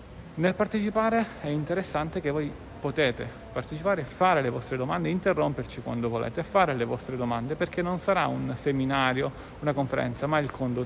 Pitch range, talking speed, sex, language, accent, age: 125-155 Hz, 160 wpm, male, Italian, native, 40-59